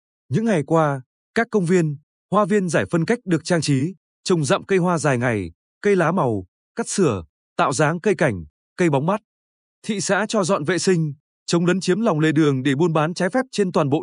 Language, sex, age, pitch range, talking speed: Vietnamese, male, 20-39, 150-195 Hz, 225 wpm